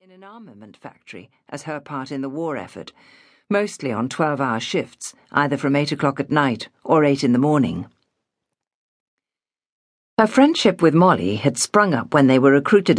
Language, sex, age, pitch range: English, female, 50-69, 140-195 Hz